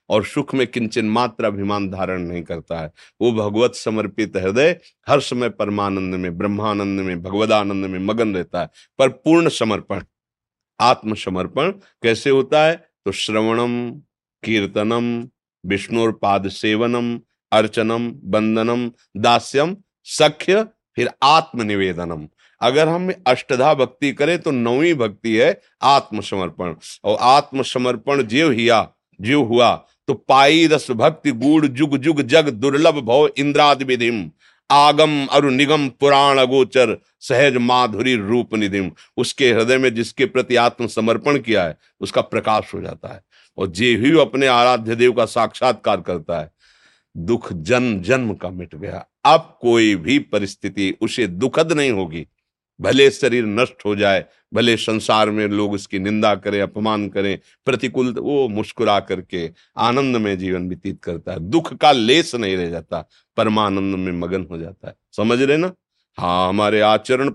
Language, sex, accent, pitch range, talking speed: Hindi, male, native, 100-135 Hz, 140 wpm